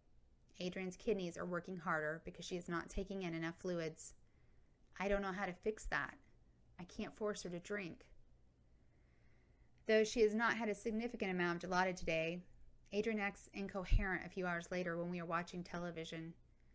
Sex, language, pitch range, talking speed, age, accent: female, English, 165-190 Hz, 175 wpm, 30-49, American